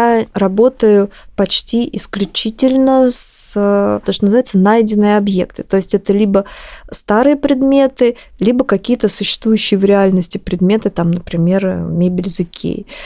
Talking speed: 125 wpm